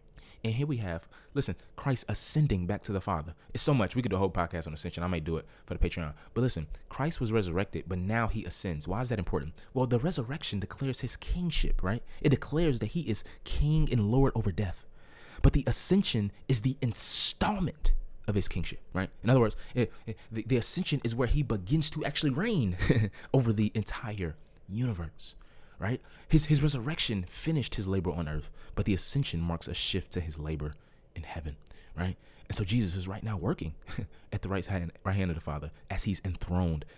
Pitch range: 85-110 Hz